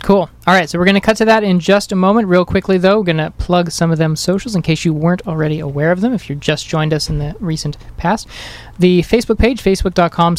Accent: American